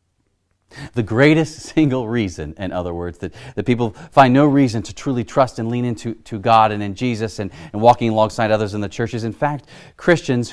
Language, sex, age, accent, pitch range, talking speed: English, male, 40-59, American, 105-130 Hz, 205 wpm